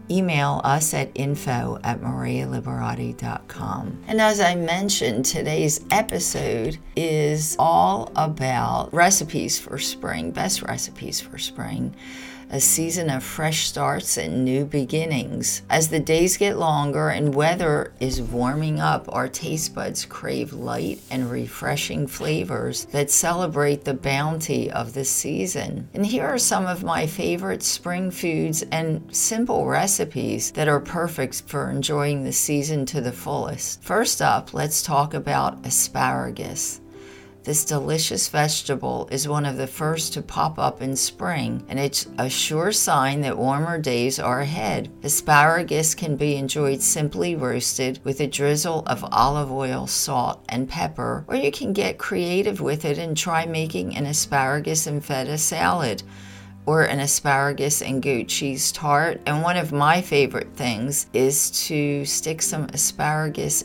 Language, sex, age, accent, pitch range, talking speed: English, female, 50-69, American, 130-160 Hz, 145 wpm